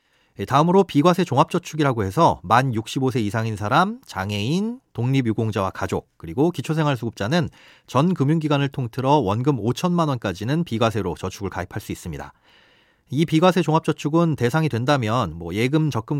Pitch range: 110-160 Hz